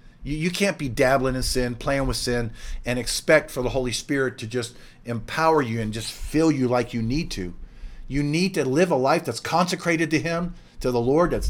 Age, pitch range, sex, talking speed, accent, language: 50-69, 115-175 Hz, male, 215 wpm, American, English